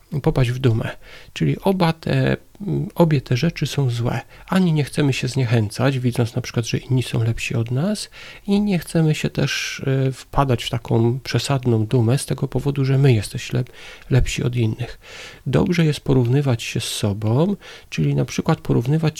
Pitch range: 120-155 Hz